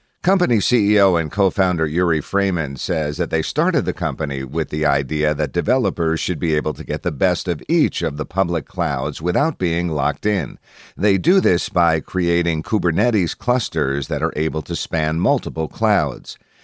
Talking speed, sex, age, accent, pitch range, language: 175 wpm, male, 50-69, American, 80-100 Hz, English